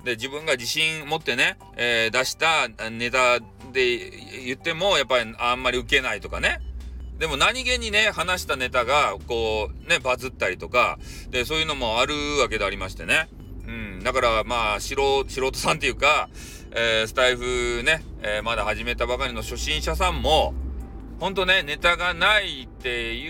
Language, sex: Japanese, male